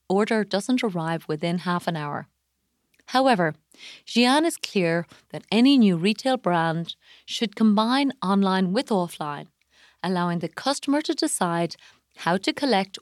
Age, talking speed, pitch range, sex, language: 30-49, 135 wpm, 170-235 Hz, female, English